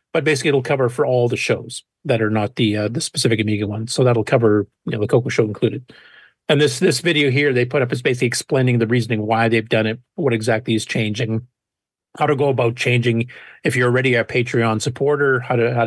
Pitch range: 115-155 Hz